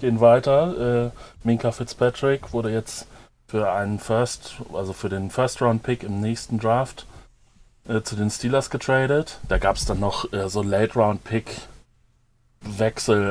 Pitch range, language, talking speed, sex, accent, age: 110-125 Hz, German, 135 wpm, male, German, 30-49